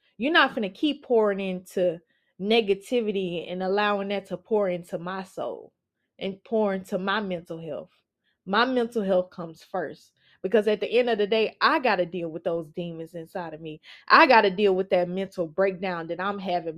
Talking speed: 195 wpm